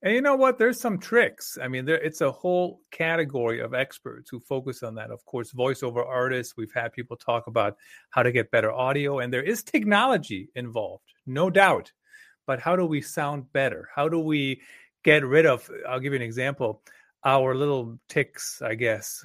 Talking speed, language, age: 195 wpm, English, 30-49